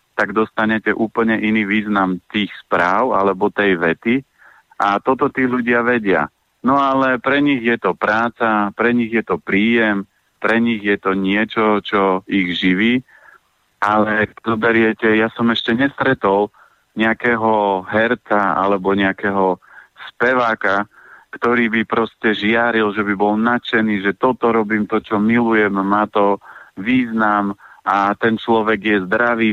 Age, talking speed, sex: 40-59, 140 wpm, male